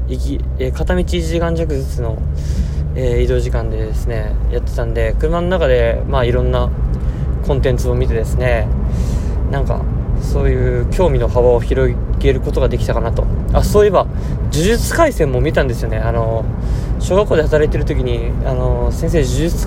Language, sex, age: Japanese, male, 20-39